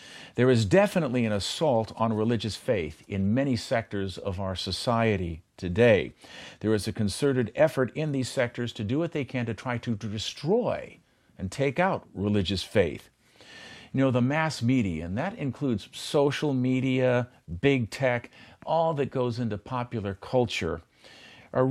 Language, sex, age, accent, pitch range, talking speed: English, male, 50-69, American, 110-145 Hz, 155 wpm